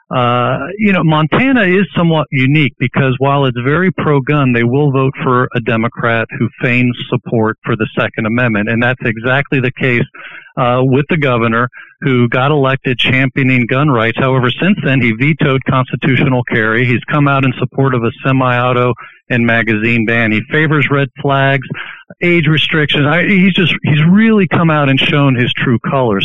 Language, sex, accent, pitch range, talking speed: English, male, American, 120-150 Hz, 170 wpm